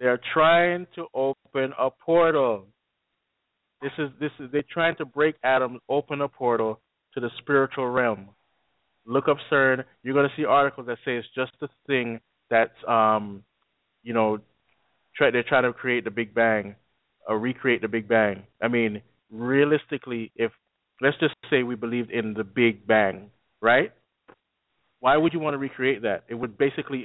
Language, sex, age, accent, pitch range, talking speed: English, male, 20-39, American, 115-155 Hz, 170 wpm